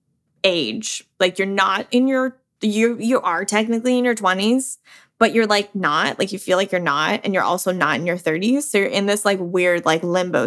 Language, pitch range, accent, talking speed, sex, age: English, 185-230 Hz, American, 220 wpm, female, 20-39